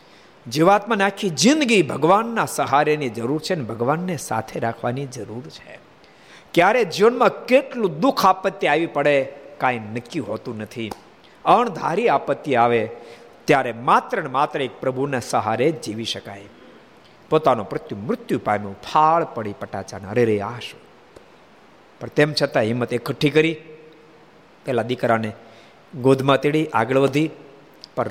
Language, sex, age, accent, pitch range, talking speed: Gujarati, male, 50-69, native, 115-155 Hz, 105 wpm